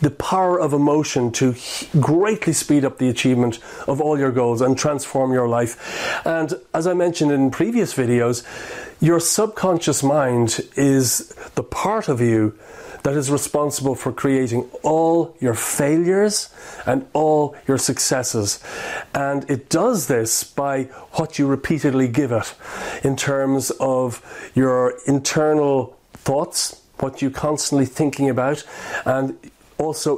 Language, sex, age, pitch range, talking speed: English, male, 40-59, 130-155 Hz, 135 wpm